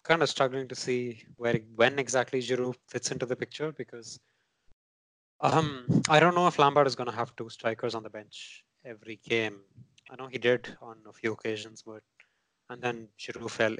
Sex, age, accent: male, 20-39, Indian